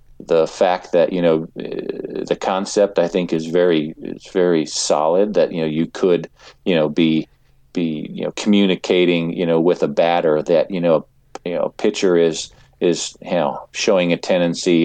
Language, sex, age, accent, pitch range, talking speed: English, male, 40-59, American, 80-90 Hz, 180 wpm